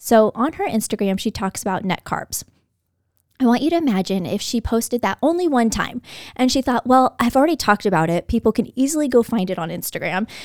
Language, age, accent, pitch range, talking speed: English, 20-39, American, 205-290 Hz, 220 wpm